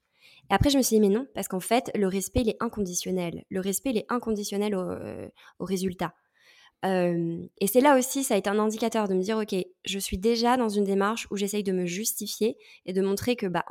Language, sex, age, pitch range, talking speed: French, female, 20-39, 185-230 Hz, 245 wpm